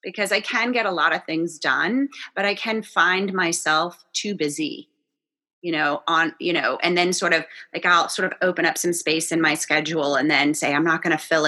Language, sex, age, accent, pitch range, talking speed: English, female, 30-49, American, 165-220 Hz, 230 wpm